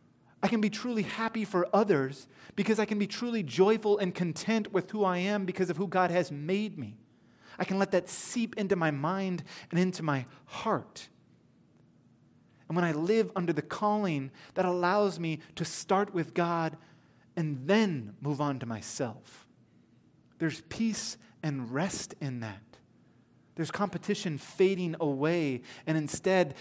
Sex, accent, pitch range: male, American, 140-185 Hz